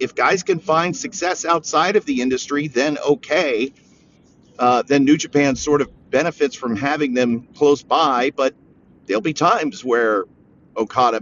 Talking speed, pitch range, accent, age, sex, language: 155 wpm, 130-165 Hz, American, 50-69, male, English